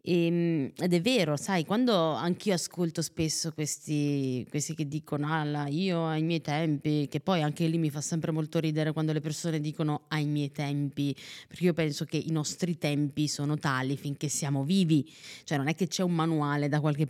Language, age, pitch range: Italian, 20-39, 150-175 Hz